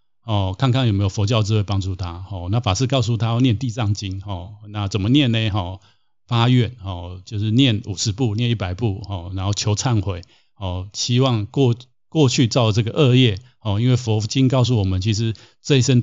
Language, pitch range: Chinese, 100-125 Hz